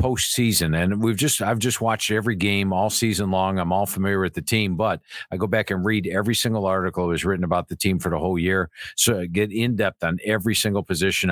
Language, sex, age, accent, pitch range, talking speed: English, male, 50-69, American, 95-115 Hz, 240 wpm